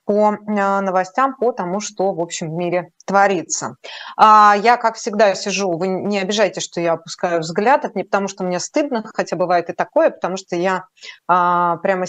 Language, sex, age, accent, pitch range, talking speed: Russian, female, 20-39, native, 175-215 Hz, 175 wpm